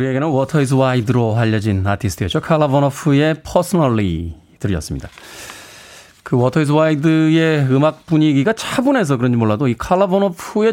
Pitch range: 110-160 Hz